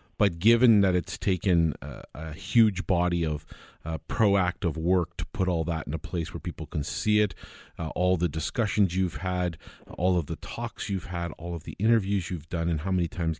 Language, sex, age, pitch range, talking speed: English, male, 40-59, 80-95 Hz, 210 wpm